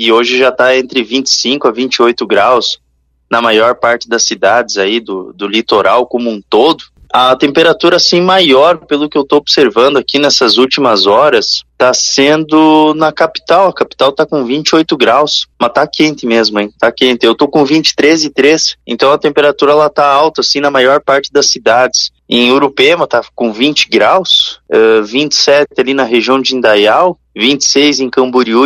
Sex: male